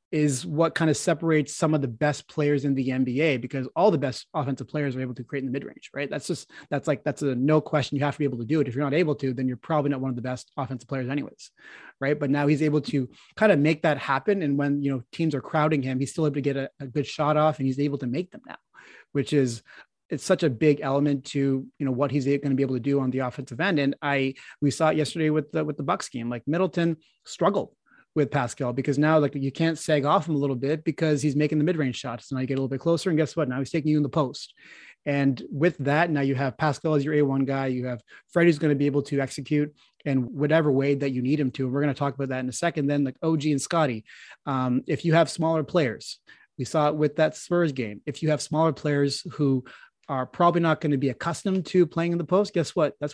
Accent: American